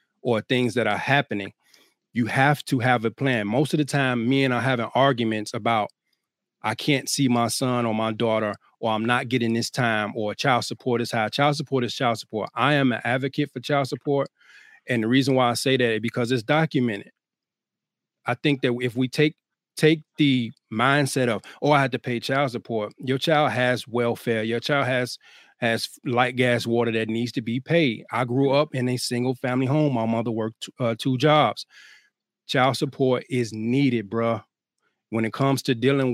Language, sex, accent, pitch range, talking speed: English, male, American, 115-135 Hz, 200 wpm